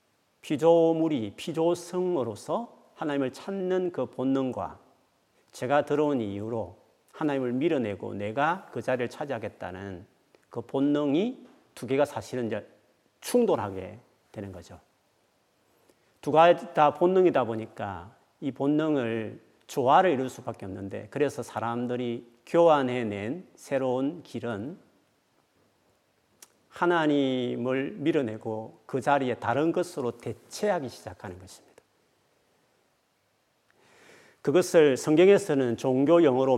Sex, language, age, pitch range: male, Korean, 40-59, 115-165 Hz